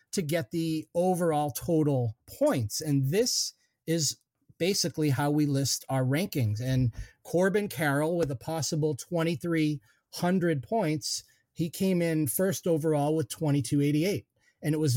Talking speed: 130 wpm